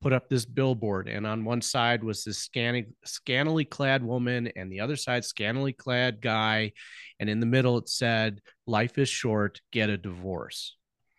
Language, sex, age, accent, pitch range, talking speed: English, male, 30-49, American, 110-140 Hz, 175 wpm